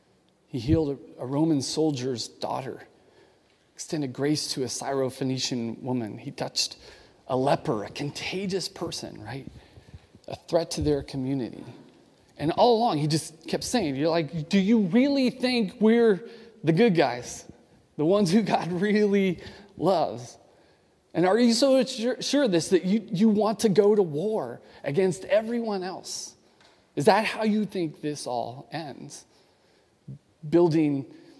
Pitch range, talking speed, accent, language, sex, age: 140-220 Hz, 140 wpm, American, English, male, 30-49